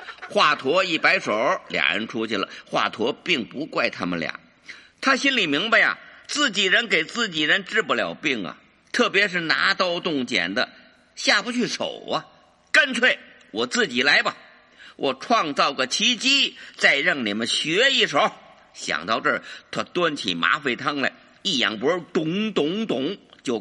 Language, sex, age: Chinese, male, 50-69